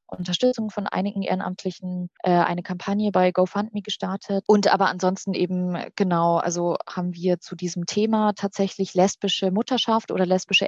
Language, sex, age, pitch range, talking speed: German, female, 20-39, 180-205 Hz, 145 wpm